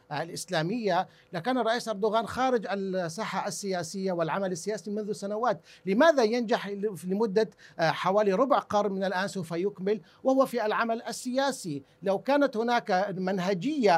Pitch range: 195-255 Hz